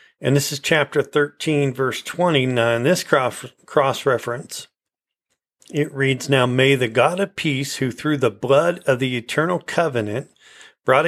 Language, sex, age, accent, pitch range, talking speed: English, male, 40-59, American, 125-150 Hz, 145 wpm